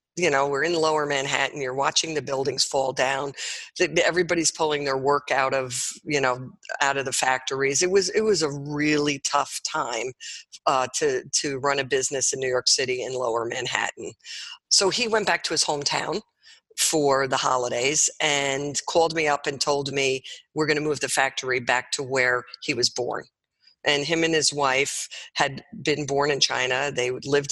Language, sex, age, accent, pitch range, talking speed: English, female, 50-69, American, 135-165 Hz, 190 wpm